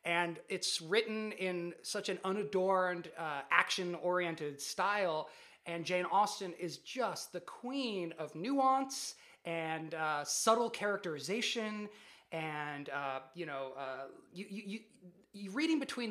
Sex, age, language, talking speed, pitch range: male, 30-49, English, 125 wpm, 170-220 Hz